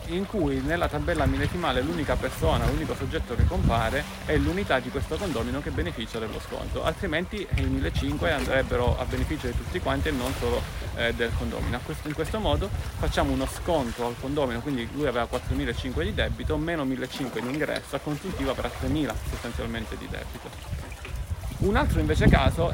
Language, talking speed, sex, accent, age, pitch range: Italian, 170 wpm, male, native, 30-49, 115-145 Hz